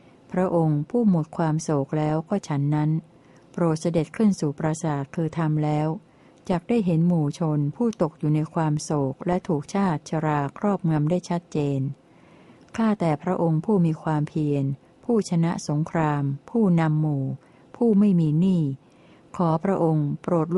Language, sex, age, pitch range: Thai, female, 60-79, 155-180 Hz